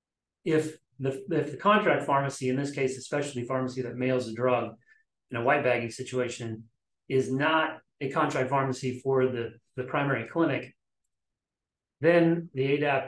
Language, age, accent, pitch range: English, 30-49, American, 125-145 Hz